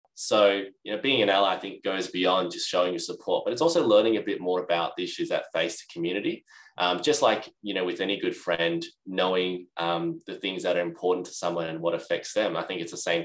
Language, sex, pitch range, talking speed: English, male, 85-120 Hz, 250 wpm